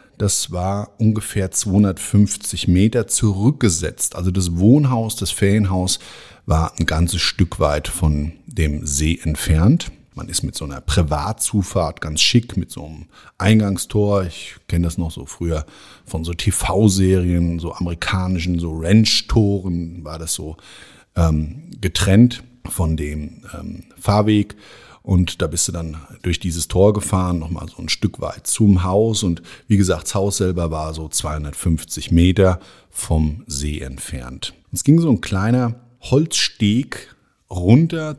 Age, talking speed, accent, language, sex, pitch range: 50-69, 140 wpm, German, German, male, 85-110 Hz